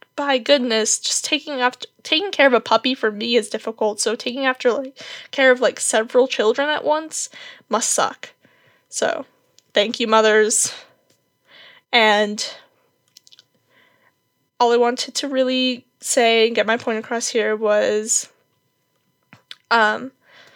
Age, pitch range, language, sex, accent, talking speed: 10-29, 225-260 Hz, English, female, American, 135 wpm